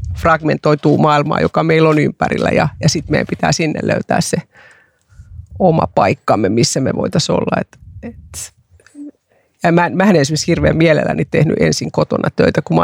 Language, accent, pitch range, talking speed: Finnish, native, 145-165 Hz, 165 wpm